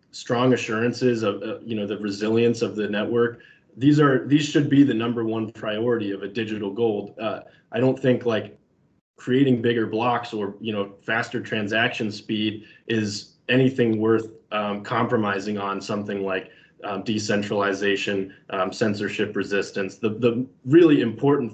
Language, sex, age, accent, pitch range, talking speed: English, male, 20-39, American, 100-120 Hz, 155 wpm